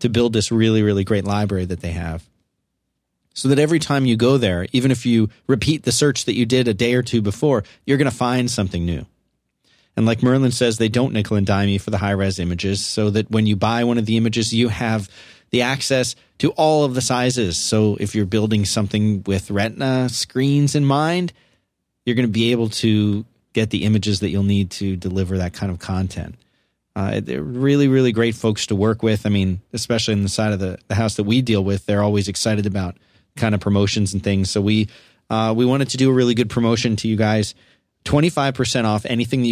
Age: 30-49